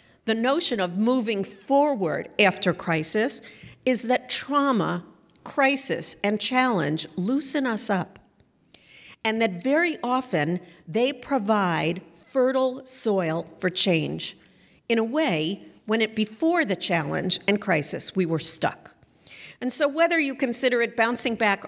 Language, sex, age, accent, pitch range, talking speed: English, female, 50-69, American, 180-240 Hz, 130 wpm